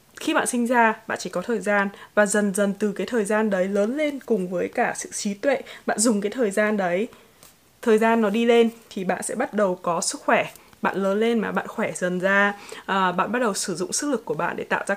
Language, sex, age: Vietnamese, female, 20-39